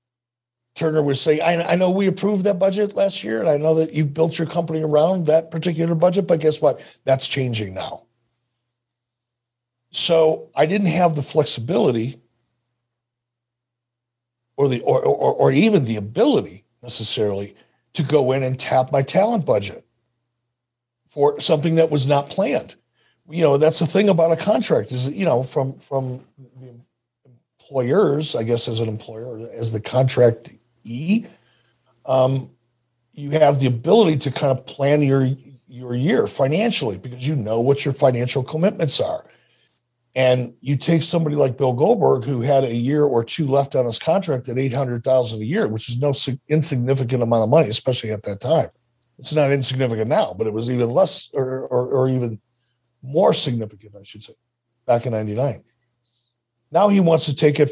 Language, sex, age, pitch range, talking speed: English, male, 60-79, 120-155 Hz, 170 wpm